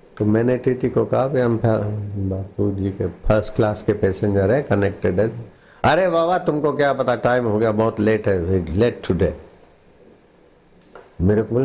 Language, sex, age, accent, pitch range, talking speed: Hindi, male, 60-79, native, 100-125 Hz, 155 wpm